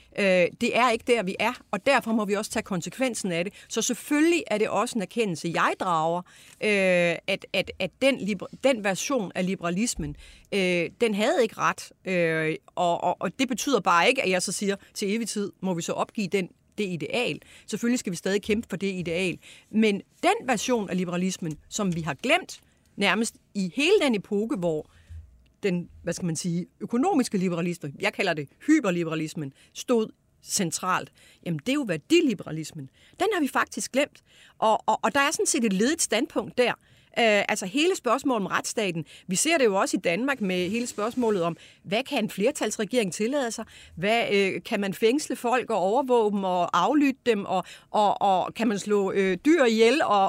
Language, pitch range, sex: Danish, 180-240 Hz, female